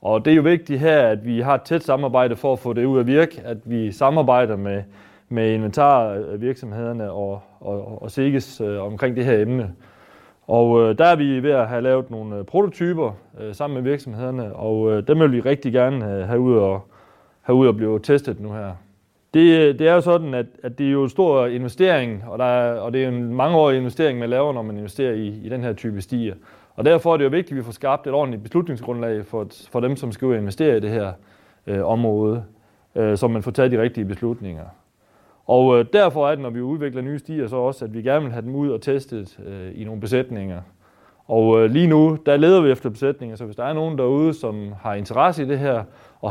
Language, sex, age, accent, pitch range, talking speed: Danish, male, 30-49, native, 105-135 Hz, 230 wpm